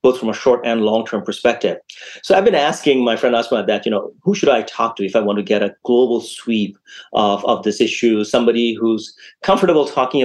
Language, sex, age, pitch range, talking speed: English, male, 30-49, 105-125 Hz, 225 wpm